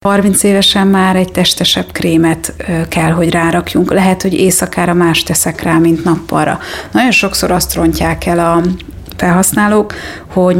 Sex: female